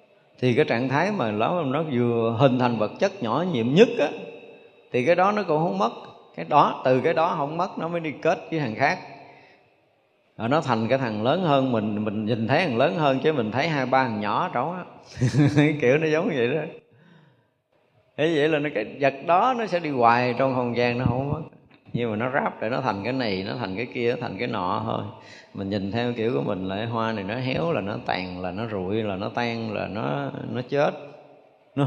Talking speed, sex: 230 wpm, male